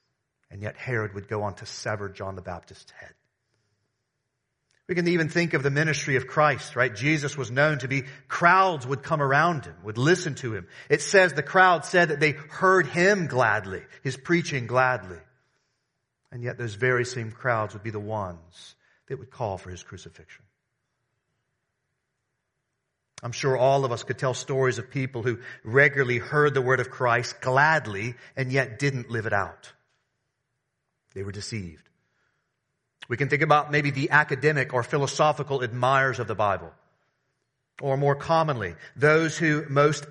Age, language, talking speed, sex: 40-59, English, 165 wpm, male